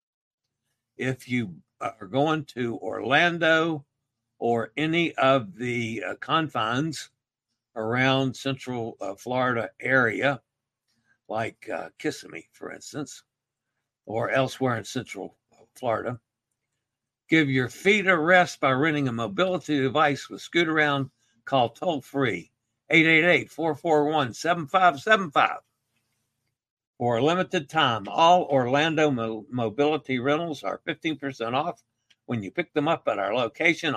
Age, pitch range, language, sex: 60-79, 115-155 Hz, English, male